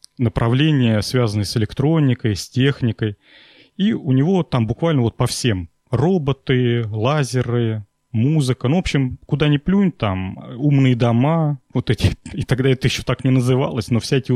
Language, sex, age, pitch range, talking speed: Russian, male, 30-49, 115-145 Hz, 155 wpm